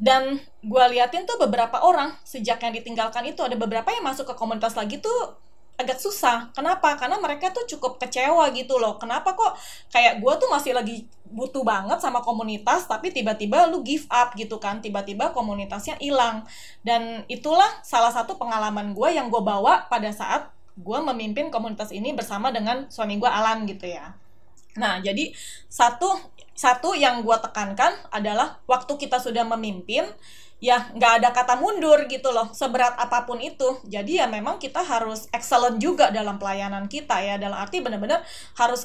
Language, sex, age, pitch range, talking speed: Indonesian, female, 20-39, 220-270 Hz, 165 wpm